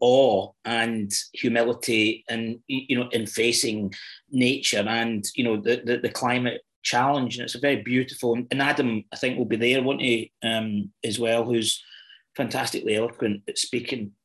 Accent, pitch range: British, 120-140 Hz